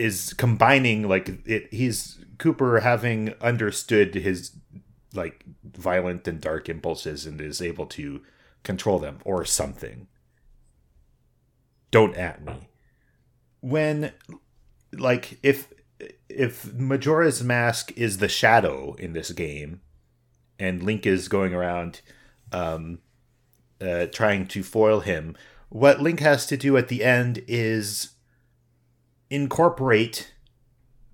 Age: 40-59